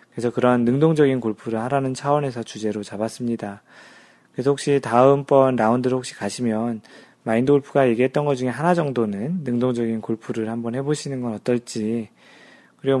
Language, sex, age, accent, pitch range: Korean, male, 20-39, native, 115-140 Hz